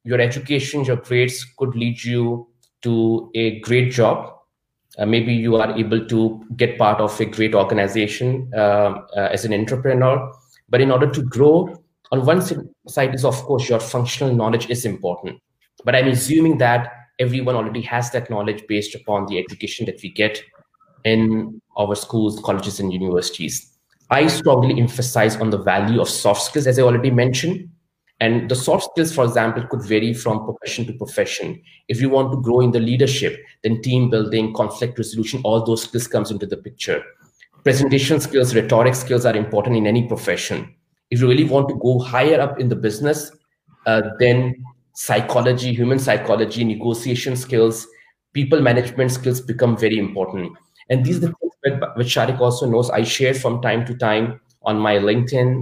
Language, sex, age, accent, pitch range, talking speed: English, male, 20-39, Indian, 110-130 Hz, 175 wpm